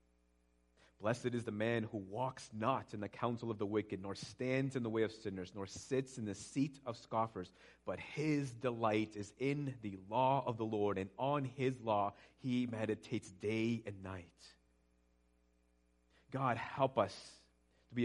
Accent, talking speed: American, 170 wpm